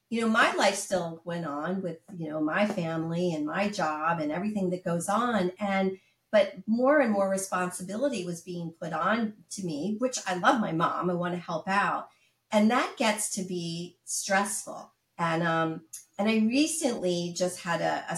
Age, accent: 50-69, American